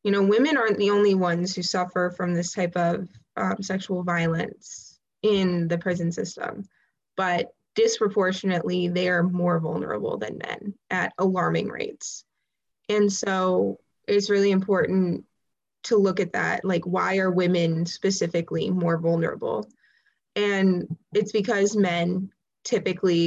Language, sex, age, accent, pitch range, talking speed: English, female, 20-39, American, 180-205 Hz, 130 wpm